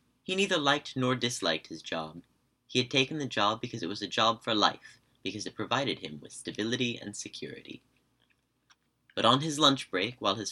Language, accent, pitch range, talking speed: English, American, 90-125 Hz, 195 wpm